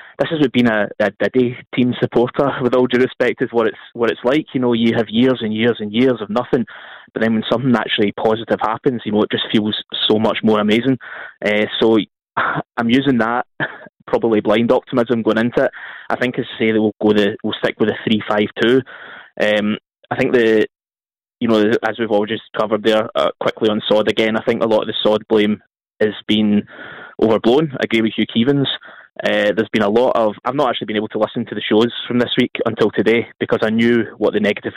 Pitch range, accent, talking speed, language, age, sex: 105-120 Hz, British, 230 wpm, English, 20-39, male